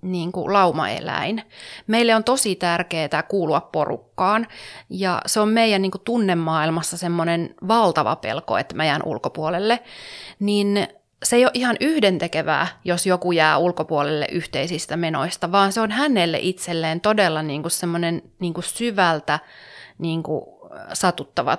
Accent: native